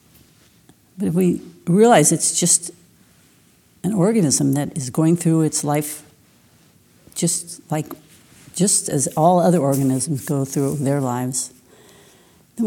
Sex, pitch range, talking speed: female, 145-175 Hz, 125 wpm